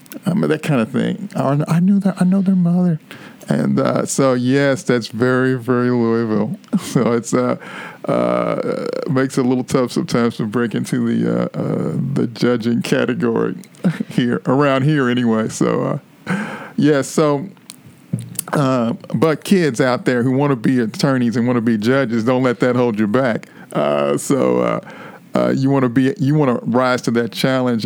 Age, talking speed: 50-69, 185 wpm